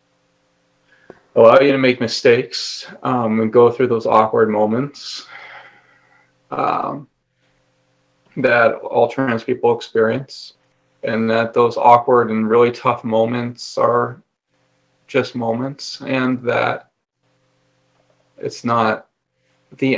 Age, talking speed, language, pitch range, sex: 30-49, 100 wpm, English, 115-130 Hz, male